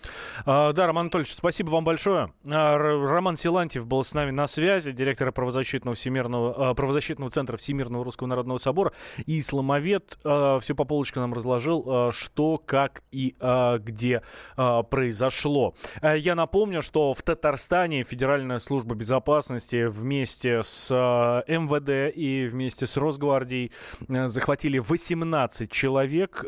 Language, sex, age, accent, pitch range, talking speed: Russian, male, 20-39, native, 125-150 Hz, 115 wpm